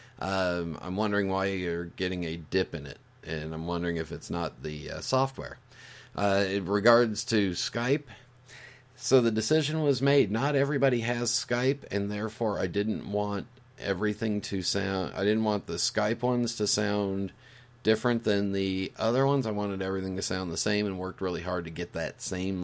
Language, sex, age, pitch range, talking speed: English, male, 40-59, 95-120 Hz, 185 wpm